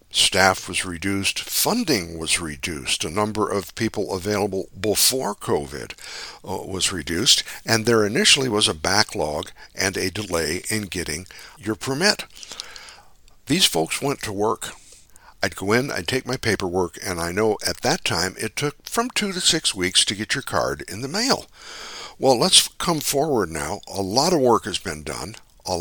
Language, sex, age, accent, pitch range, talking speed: English, male, 60-79, American, 90-115 Hz, 170 wpm